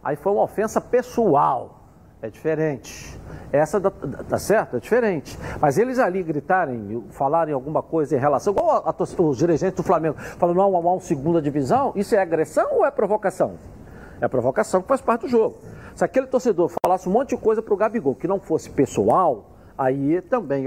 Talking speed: 195 wpm